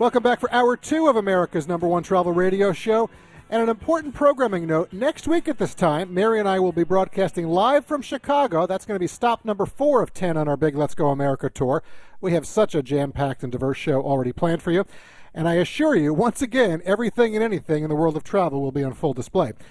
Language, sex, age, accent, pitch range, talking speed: English, male, 40-59, American, 155-220 Hz, 240 wpm